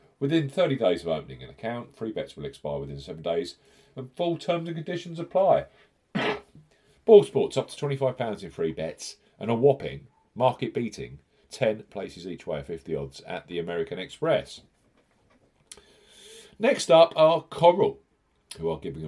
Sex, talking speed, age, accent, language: male, 160 wpm, 40-59, British, English